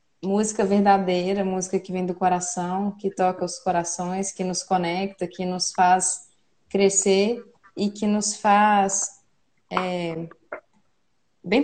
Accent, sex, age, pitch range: Brazilian, female, 20-39, 195-230 Hz